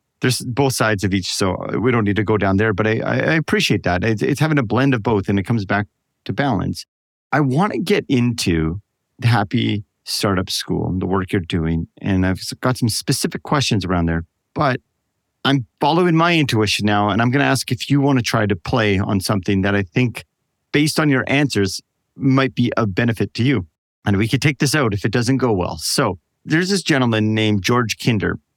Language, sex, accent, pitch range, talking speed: English, male, American, 100-135 Hz, 220 wpm